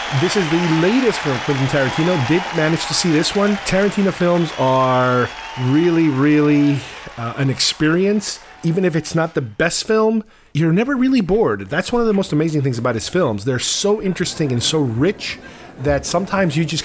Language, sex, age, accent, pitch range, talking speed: English, male, 40-59, American, 135-190 Hz, 185 wpm